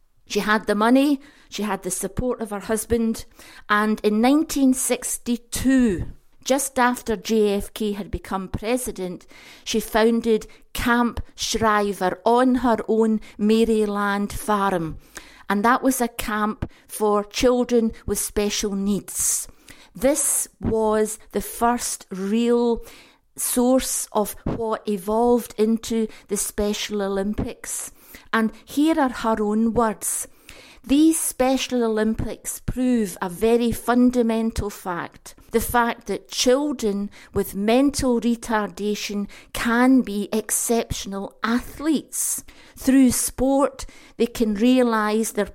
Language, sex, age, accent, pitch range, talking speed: English, female, 50-69, British, 210-245 Hz, 110 wpm